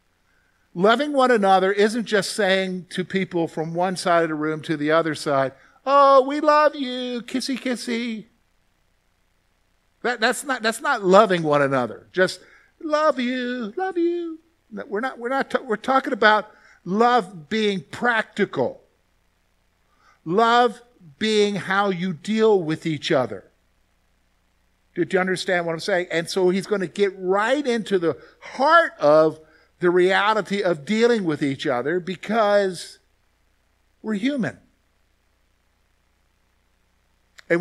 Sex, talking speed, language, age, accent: male, 135 wpm, English, 50-69, American